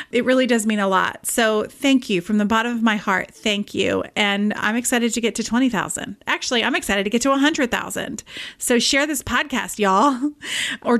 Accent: American